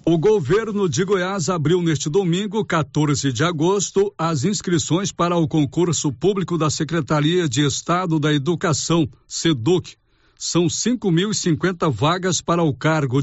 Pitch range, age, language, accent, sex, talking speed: 150-185 Hz, 60-79, Portuguese, Brazilian, male, 130 wpm